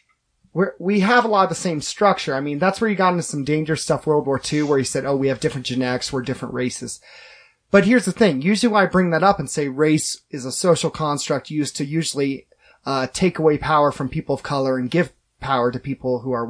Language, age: English, 30-49